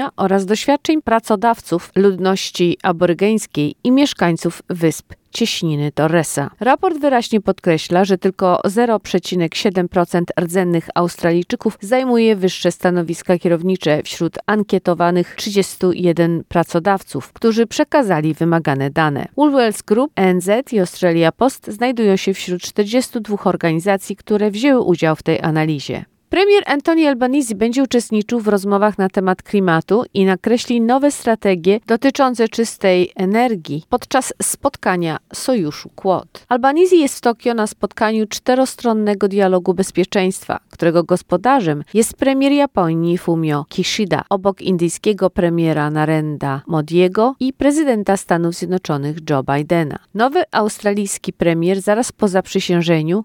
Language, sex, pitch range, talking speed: Polish, female, 175-230 Hz, 115 wpm